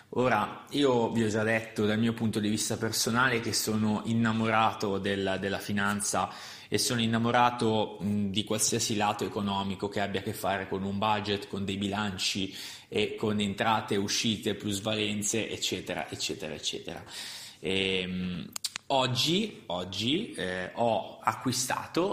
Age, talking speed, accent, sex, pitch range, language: 20-39, 140 wpm, native, male, 100-120 Hz, Italian